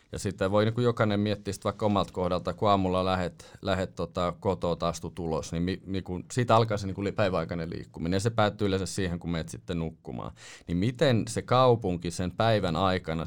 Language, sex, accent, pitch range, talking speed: Finnish, male, native, 85-105 Hz, 205 wpm